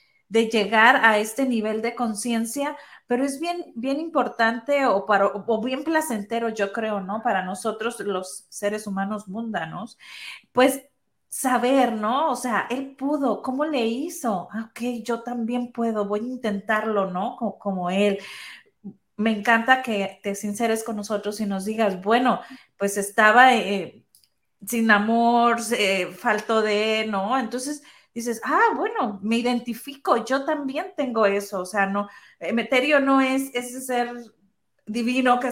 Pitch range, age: 215-265 Hz, 30-49